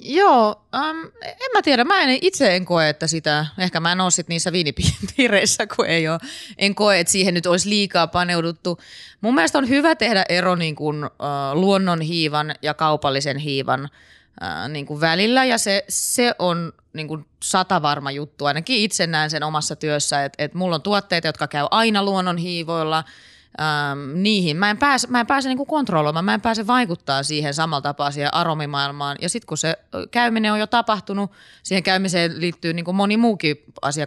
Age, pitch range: 20-39, 150-215 Hz